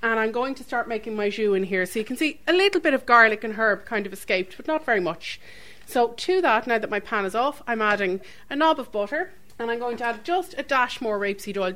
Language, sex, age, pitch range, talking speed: English, female, 30-49, 195-240 Hz, 275 wpm